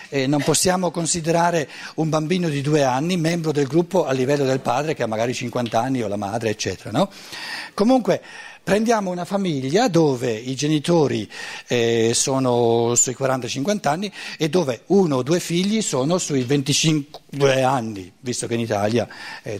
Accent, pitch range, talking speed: native, 115-170 Hz, 160 wpm